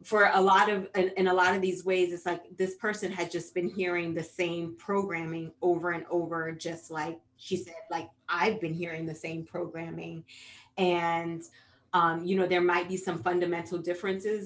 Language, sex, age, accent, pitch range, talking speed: English, female, 30-49, American, 165-200 Hz, 185 wpm